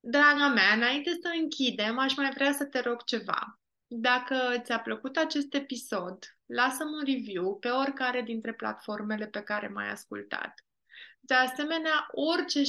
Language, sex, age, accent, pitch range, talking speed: Romanian, female, 20-39, native, 220-270 Hz, 150 wpm